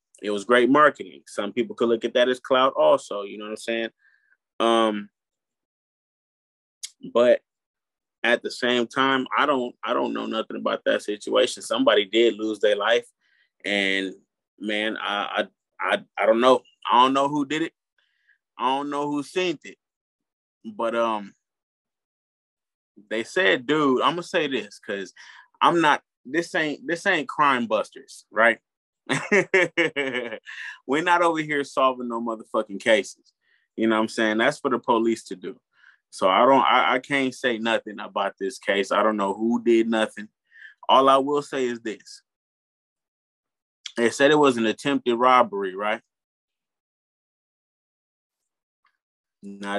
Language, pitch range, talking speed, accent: English, 110-135 Hz, 155 wpm, American